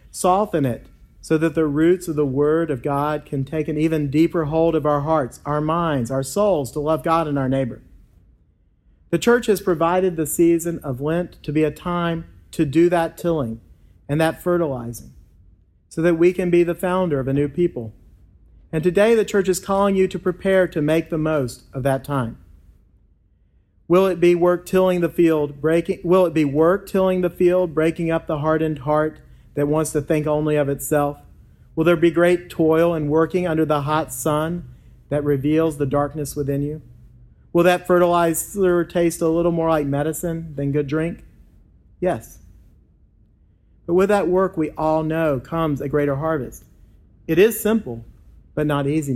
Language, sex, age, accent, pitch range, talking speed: English, male, 40-59, American, 140-175 Hz, 185 wpm